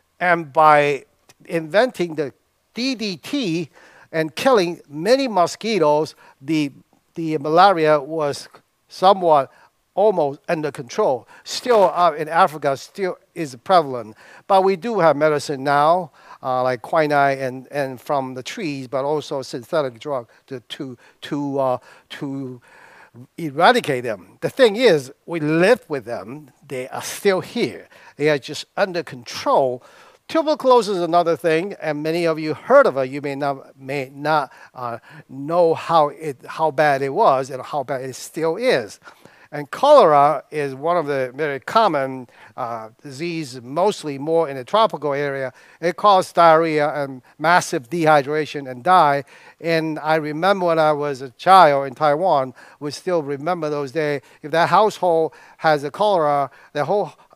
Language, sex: Chinese, male